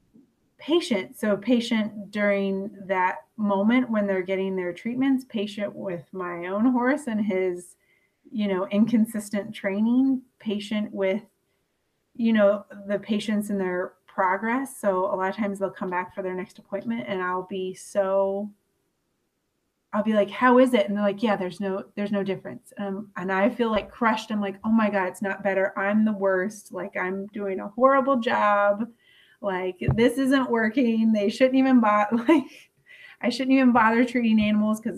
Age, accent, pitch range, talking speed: 30-49, American, 190-220 Hz, 175 wpm